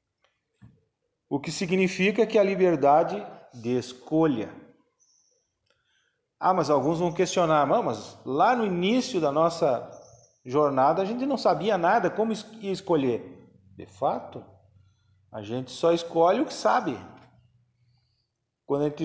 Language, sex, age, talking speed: Portuguese, male, 40-59, 125 wpm